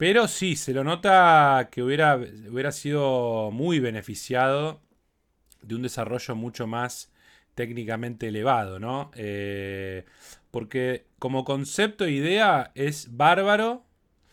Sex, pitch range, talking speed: male, 100-140 Hz, 115 wpm